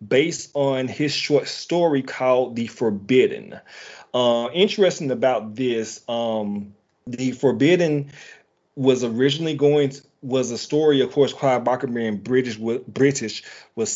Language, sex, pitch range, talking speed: English, male, 110-140 Hz, 130 wpm